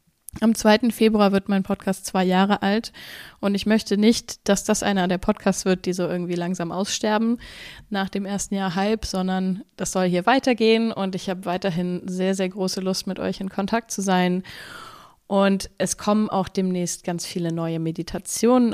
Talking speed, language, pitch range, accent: 185 wpm, German, 175-205 Hz, German